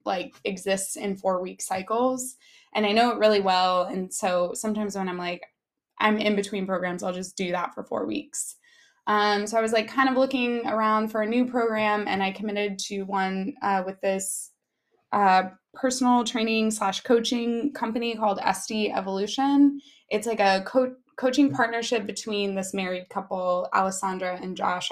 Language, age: English, 20-39